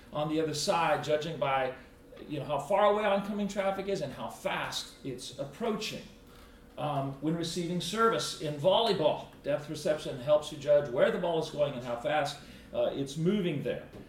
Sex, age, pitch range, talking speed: male, 40-59, 140-190 Hz, 180 wpm